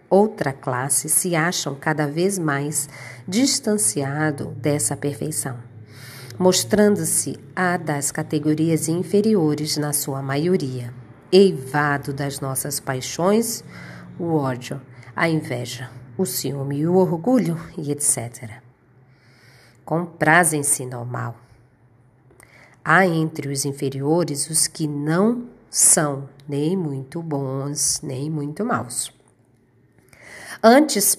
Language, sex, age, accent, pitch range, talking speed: Portuguese, female, 40-59, Brazilian, 135-165 Hz, 95 wpm